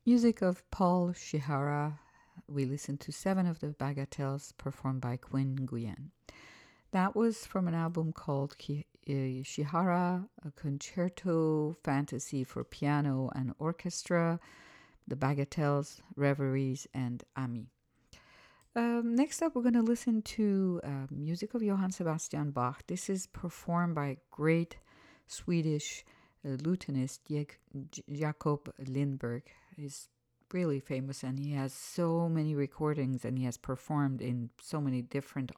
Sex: female